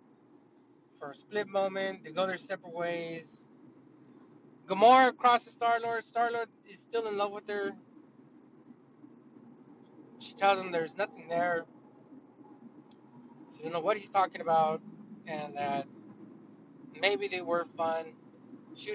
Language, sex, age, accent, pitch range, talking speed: English, male, 30-49, American, 170-265 Hz, 120 wpm